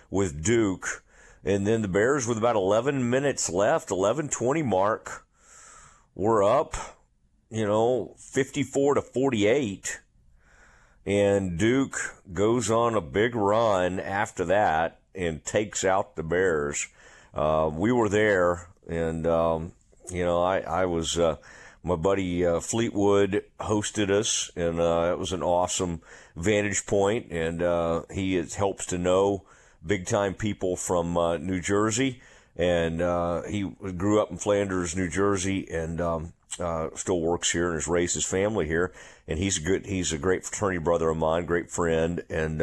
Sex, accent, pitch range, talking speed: male, American, 85-100 Hz, 150 wpm